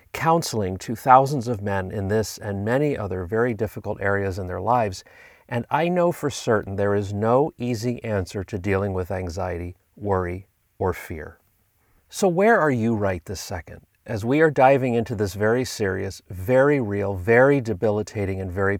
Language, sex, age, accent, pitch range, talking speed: English, male, 40-59, American, 100-130 Hz, 170 wpm